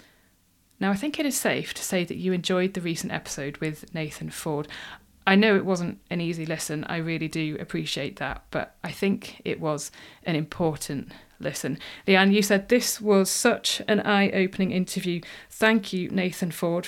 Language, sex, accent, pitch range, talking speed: English, female, British, 160-195 Hz, 180 wpm